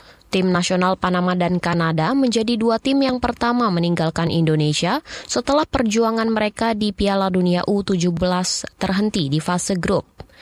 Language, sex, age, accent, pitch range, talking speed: Indonesian, female, 20-39, native, 175-225 Hz, 135 wpm